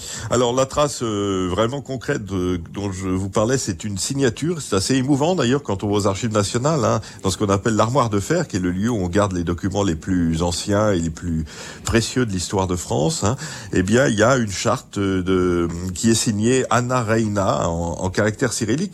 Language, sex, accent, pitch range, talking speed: French, male, French, 90-115 Hz, 220 wpm